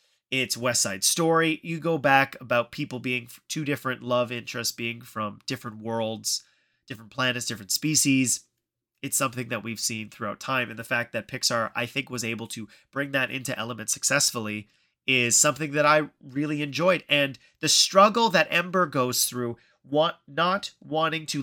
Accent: American